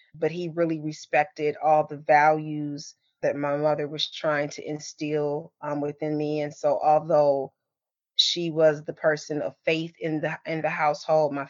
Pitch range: 140-155 Hz